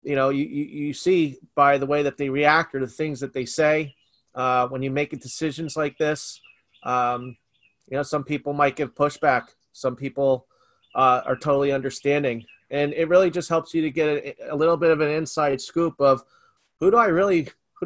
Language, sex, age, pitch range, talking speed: English, male, 30-49, 135-160 Hz, 200 wpm